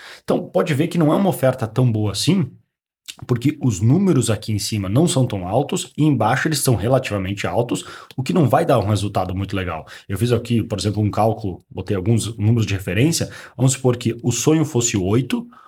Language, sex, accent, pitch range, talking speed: Portuguese, male, Brazilian, 110-140 Hz, 210 wpm